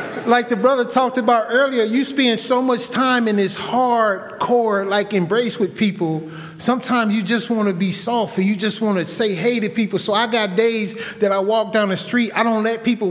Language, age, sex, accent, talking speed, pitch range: English, 30-49, male, American, 210 wpm, 180-235 Hz